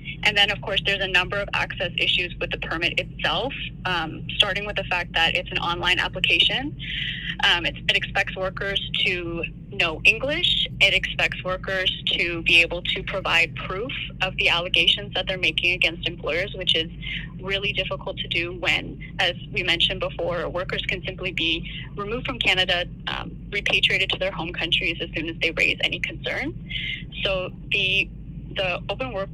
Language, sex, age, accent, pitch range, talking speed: English, female, 10-29, American, 160-185 Hz, 170 wpm